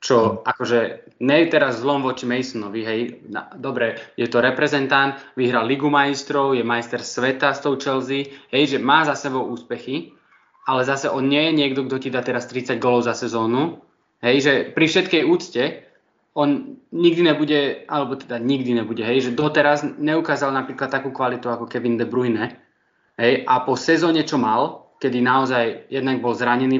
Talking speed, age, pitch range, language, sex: 170 wpm, 20-39, 125-150 Hz, Slovak, male